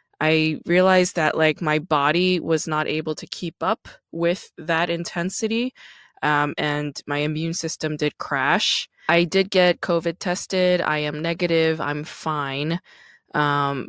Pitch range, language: 150-170 Hz, English